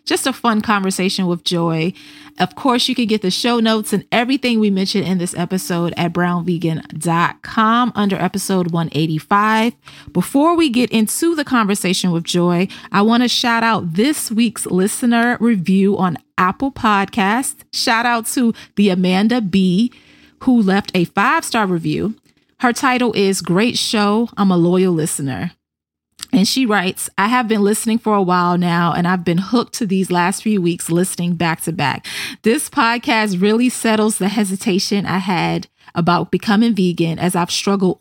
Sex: female